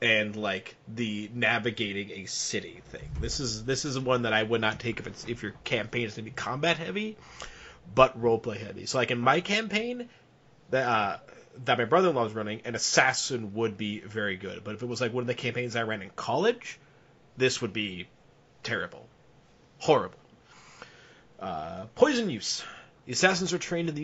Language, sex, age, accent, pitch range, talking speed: English, male, 30-49, American, 115-170 Hz, 190 wpm